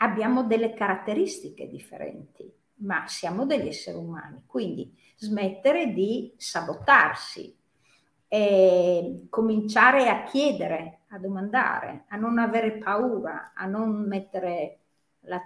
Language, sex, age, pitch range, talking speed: Italian, female, 50-69, 185-245 Hz, 100 wpm